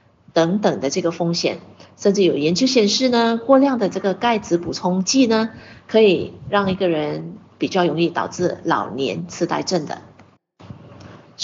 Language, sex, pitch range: Chinese, female, 175-230 Hz